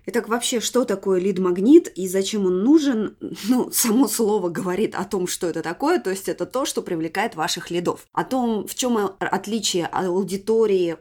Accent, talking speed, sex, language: native, 175 wpm, female, Russian